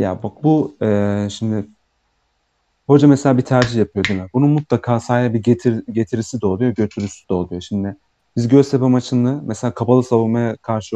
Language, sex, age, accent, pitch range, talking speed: Turkish, male, 40-59, native, 105-130 Hz, 170 wpm